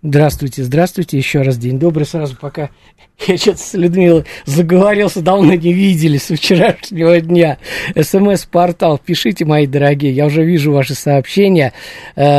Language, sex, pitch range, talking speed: Russian, male, 130-160 Hz, 135 wpm